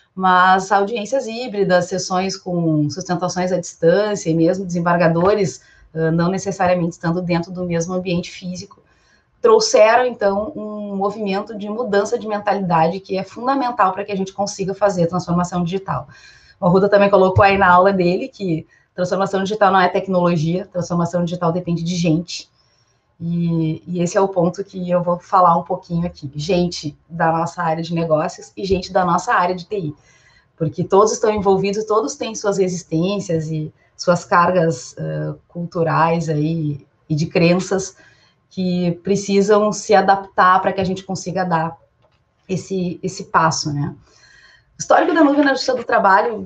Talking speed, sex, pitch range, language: 160 wpm, female, 170-195 Hz, Portuguese